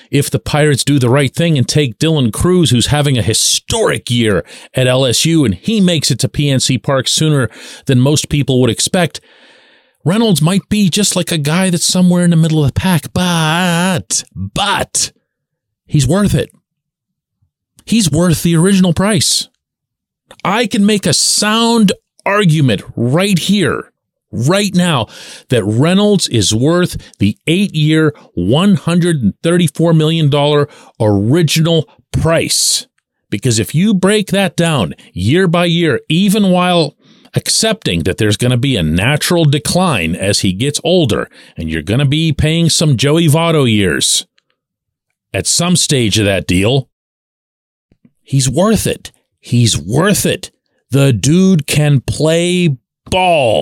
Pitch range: 130-180 Hz